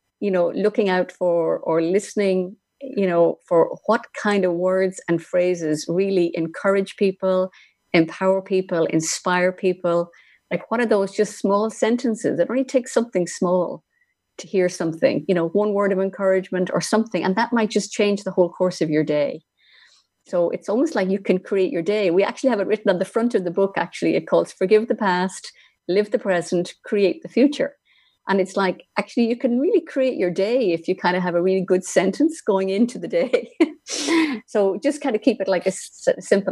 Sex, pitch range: female, 180-215 Hz